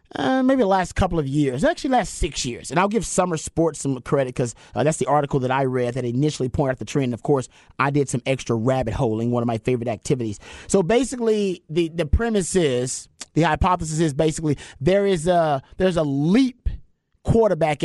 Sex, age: male, 30-49